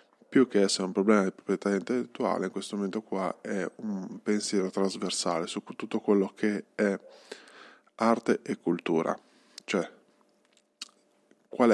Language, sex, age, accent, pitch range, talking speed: Italian, male, 20-39, native, 95-105 Hz, 135 wpm